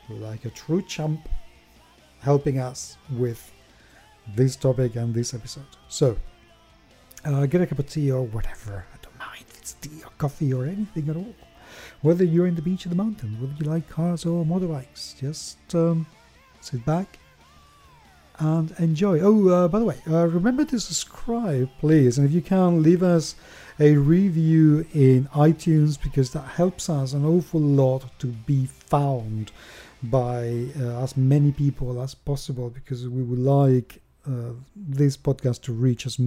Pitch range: 125-160 Hz